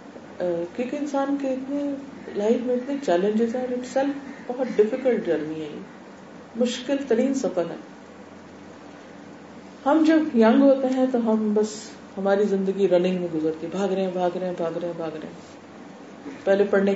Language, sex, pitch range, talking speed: Urdu, female, 175-225 Hz, 65 wpm